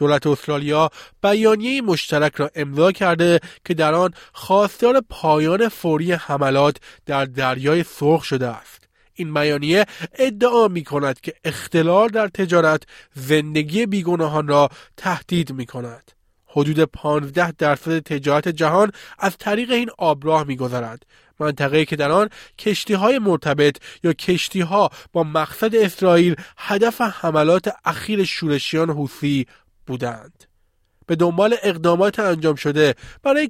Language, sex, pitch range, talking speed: Persian, male, 145-190 Hz, 120 wpm